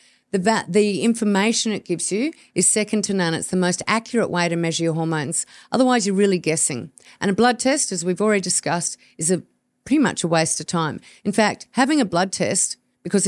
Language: English